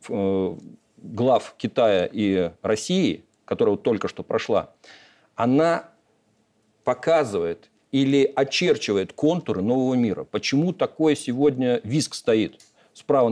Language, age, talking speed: Russian, 50-69, 95 wpm